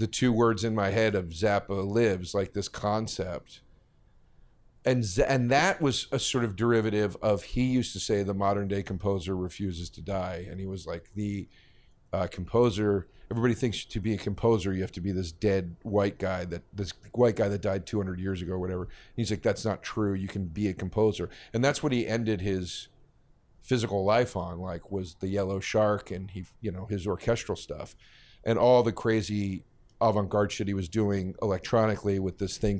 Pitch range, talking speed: 95-115 Hz, 200 wpm